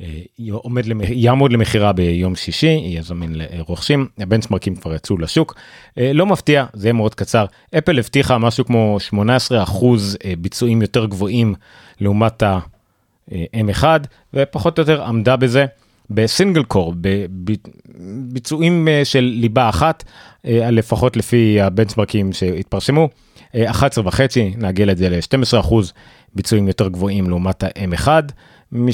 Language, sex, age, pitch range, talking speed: Hebrew, male, 30-49, 95-125 Hz, 110 wpm